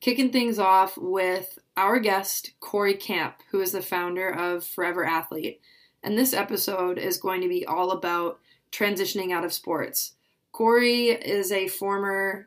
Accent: American